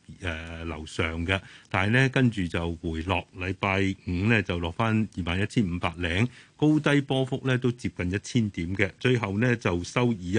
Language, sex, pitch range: Chinese, male, 90-115 Hz